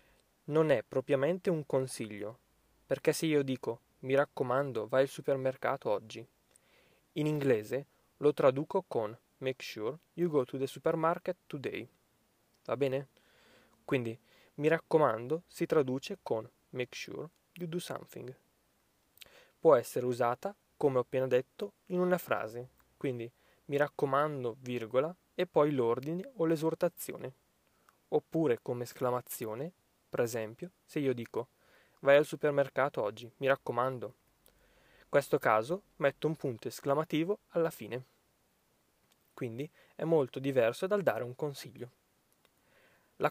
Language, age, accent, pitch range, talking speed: Italian, 20-39, native, 125-160 Hz, 125 wpm